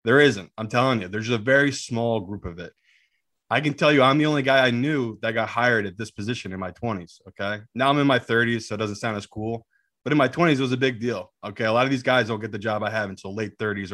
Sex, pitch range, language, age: male, 105-135 Hz, English, 20-39